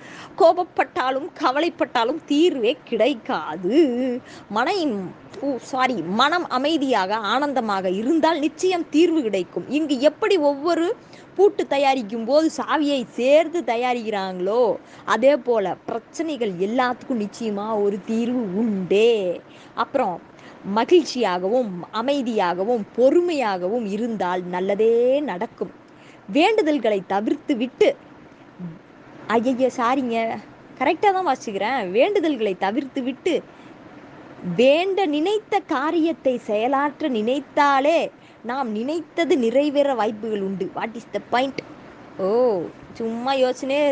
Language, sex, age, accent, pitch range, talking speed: Tamil, female, 20-39, native, 225-300 Hz, 70 wpm